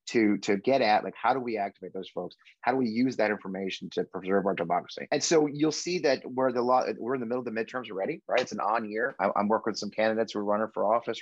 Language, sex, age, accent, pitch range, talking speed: English, male, 30-49, American, 110-155 Hz, 285 wpm